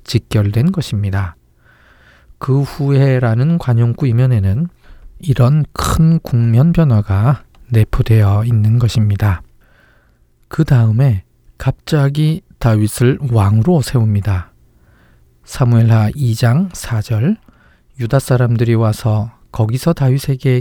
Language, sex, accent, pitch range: Korean, male, native, 105-135 Hz